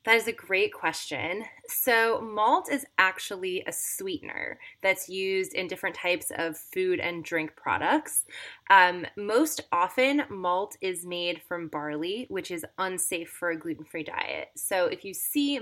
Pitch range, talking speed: 170-230 Hz, 155 wpm